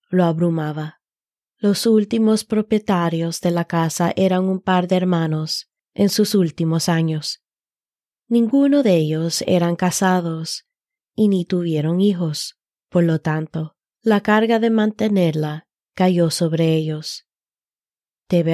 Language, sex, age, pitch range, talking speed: Spanish, female, 20-39, 165-200 Hz, 120 wpm